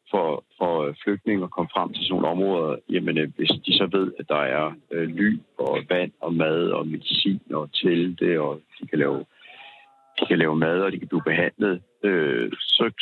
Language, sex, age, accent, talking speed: Danish, male, 60-79, native, 190 wpm